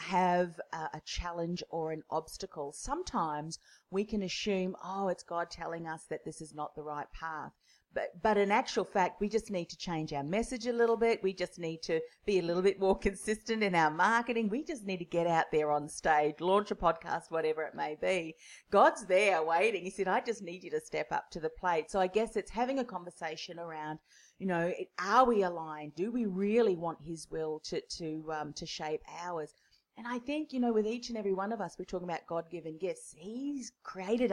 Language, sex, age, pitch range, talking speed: English, female, 40-59, 160-210 Hz, 220 wpm